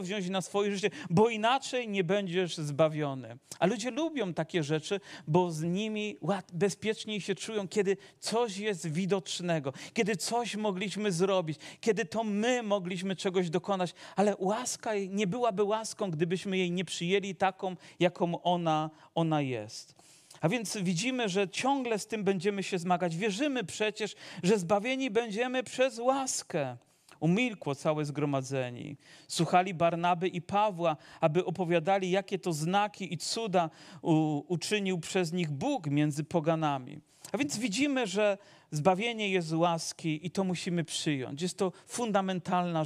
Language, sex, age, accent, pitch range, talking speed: Polish, male, 40-59, native, 160-205 Hz, 140 wpm